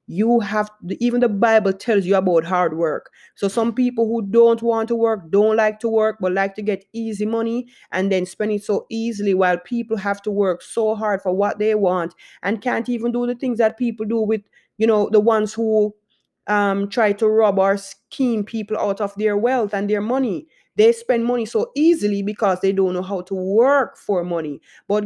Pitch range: 185-225 Hz